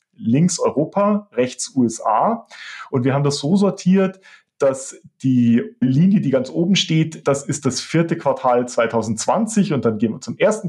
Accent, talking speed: German, 165 wpm